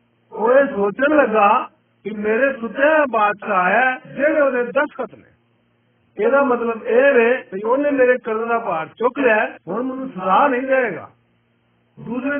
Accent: native